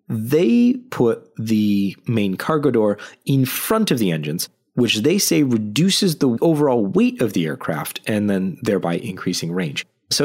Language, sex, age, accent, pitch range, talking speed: English, male, 30-49, American, 100-150 Hz, 160 wpm